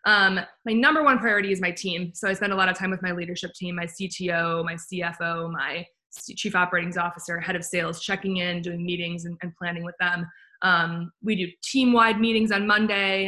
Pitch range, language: 175-205 Hz, English